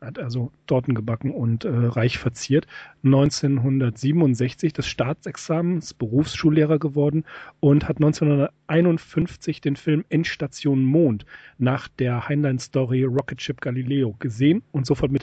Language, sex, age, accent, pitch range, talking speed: German, male, 40-59, German, 135-155 Hz, 125 wpm